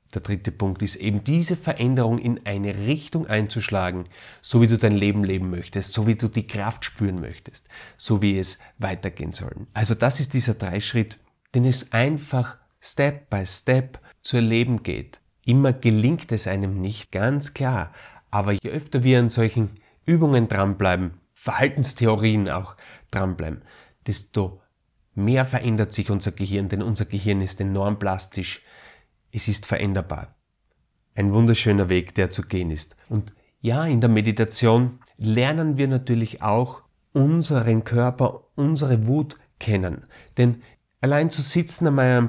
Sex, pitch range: male, 100-130 Hz